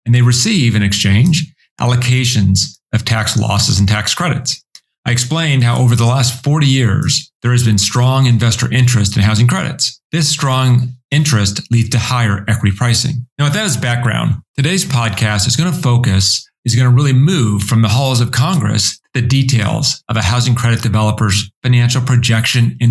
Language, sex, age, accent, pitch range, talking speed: English, male, 40-59, American, 110-130 Hz, 175 wpm